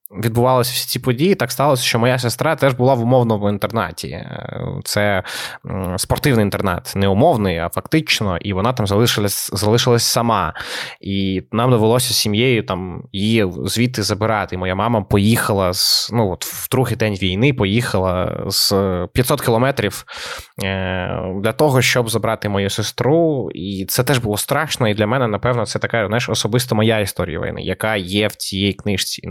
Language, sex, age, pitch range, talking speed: Ukrainian, male, 20-39, 100-125 Hz, 160 wpm